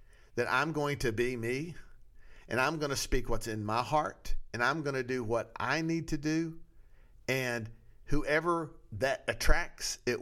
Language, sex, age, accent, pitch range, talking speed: English, male, 50-69, American, 110-140 Hz, 160 wpm